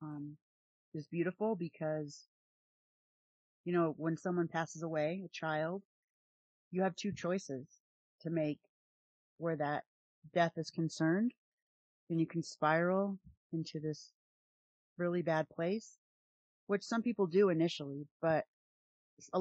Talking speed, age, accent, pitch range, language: 120 wpm, 30-49, American, 155-205 Hz, English